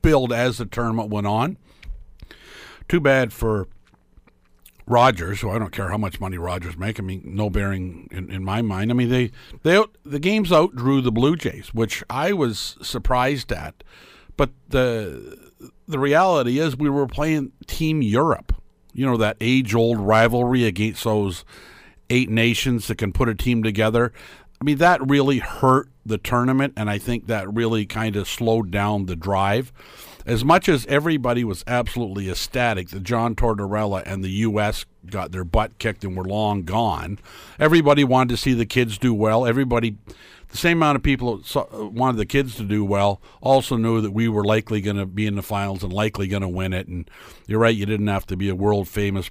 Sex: male